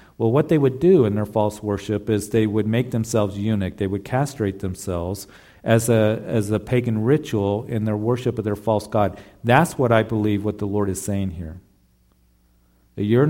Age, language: 50-69, English